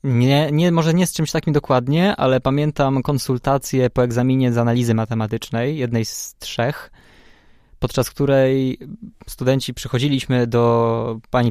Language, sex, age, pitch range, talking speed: Polish, male, 20-39, 120-145 Hz, 130 wpm